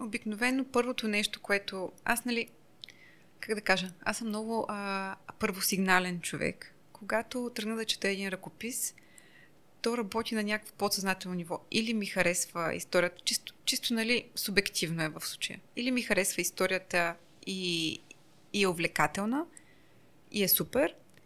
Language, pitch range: Bulgarian, 185-235 Hz